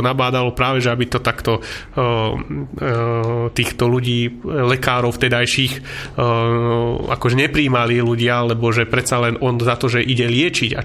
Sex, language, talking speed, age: male, Slovak, 150 wpm, 30-49